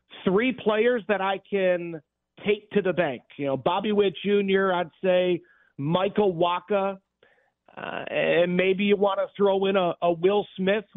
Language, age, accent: English, 40-59, American